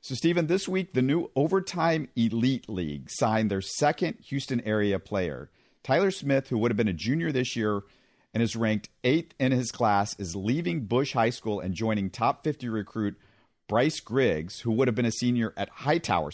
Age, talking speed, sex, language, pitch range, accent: 50-69, 190 wpm, male, English, 110-145 Hz, American